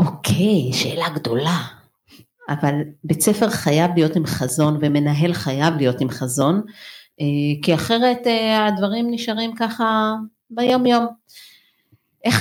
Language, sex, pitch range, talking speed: Hebrew, female, 145-205 Hz, 115 wpm